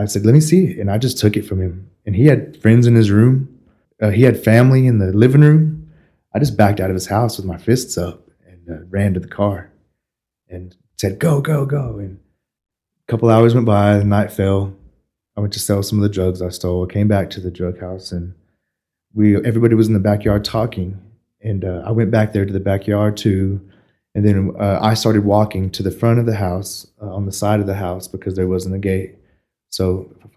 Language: English